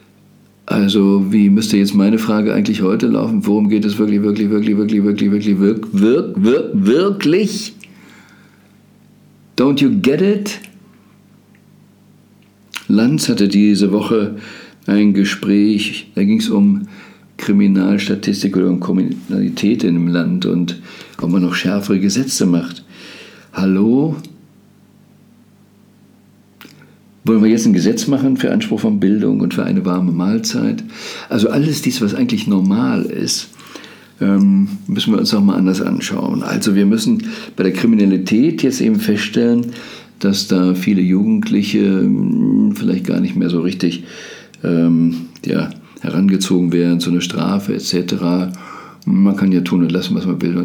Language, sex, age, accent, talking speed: German, male, 50-69, German, 135 wpm